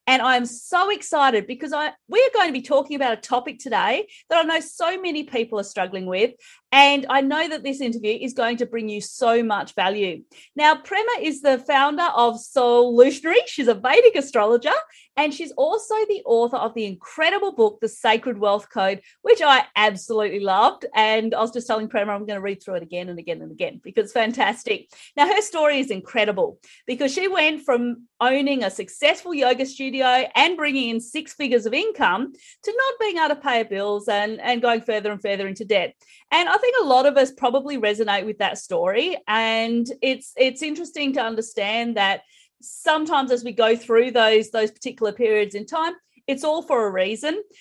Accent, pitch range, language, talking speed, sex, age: Australian, 225-310 Hz, English, 200 wpm, female, 30-49